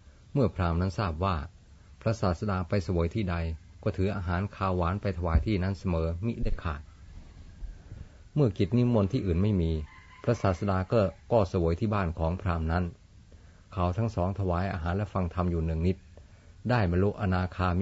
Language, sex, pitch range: Thai, male, 85-100 Hz